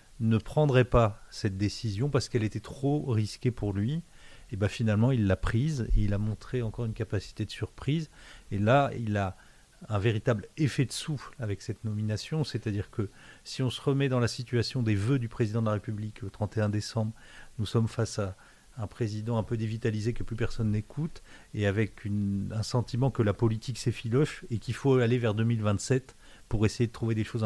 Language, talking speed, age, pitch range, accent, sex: French, 200 wpm, 40-59, 105-125 Hz, French, male